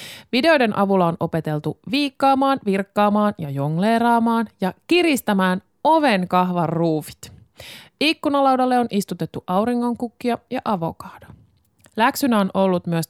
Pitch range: 175-255 Hz